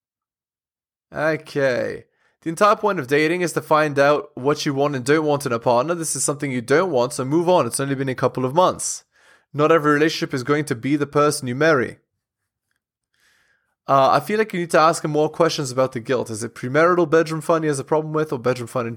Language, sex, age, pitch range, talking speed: English, male, 20-39, 130-165 Hz, 235 wpm